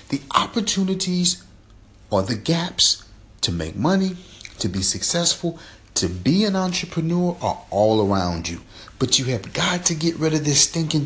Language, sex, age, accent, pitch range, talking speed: English, male, 40-59, American, 110-175 Hz, 155 wpm